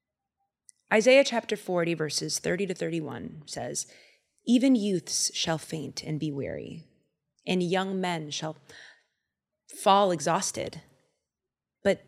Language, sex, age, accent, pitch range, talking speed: English, female, 20-39, American, 170-230 Hz, 110 wpm